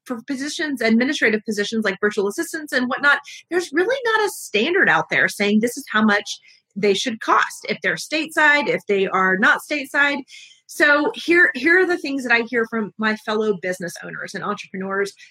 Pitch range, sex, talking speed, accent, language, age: 220-315 Hz, female, 190 wpm, American, English, 30-49